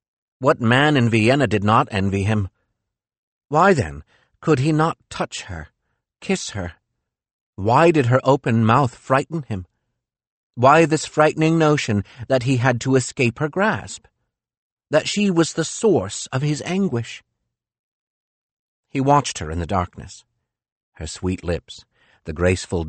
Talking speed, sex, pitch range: 140 wpm, male, 90-125 Hz